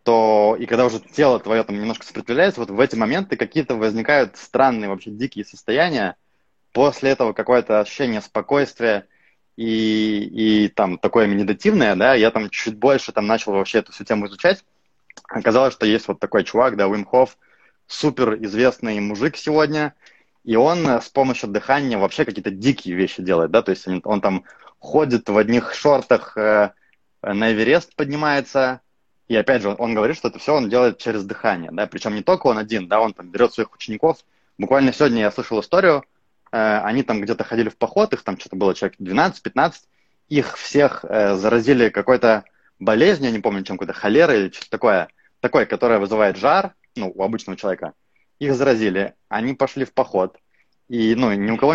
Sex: male